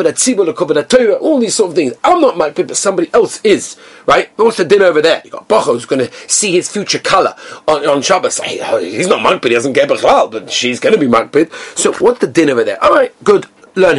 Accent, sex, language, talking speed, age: British, male, English, 230 wpm, 40-59